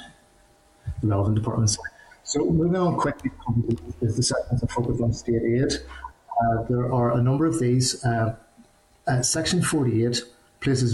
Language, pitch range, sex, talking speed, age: English, 110-120 Hz, male, 135 wpm, 30-49